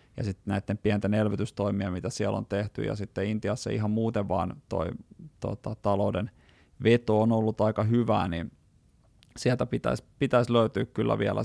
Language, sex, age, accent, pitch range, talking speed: Finnish, male, 30-49, native, 105-120 Hz, 150 wpm